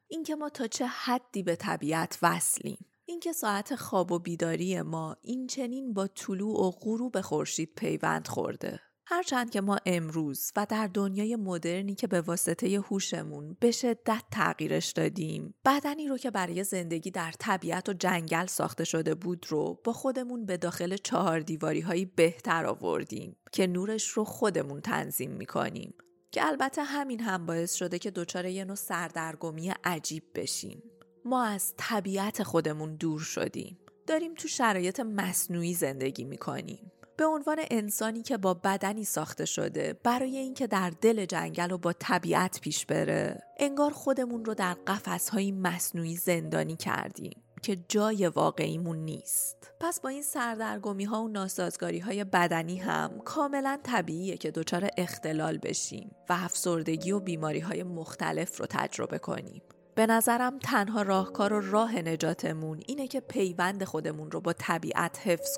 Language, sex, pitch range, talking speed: Persian, female, 170-235 Hz, 145 wpm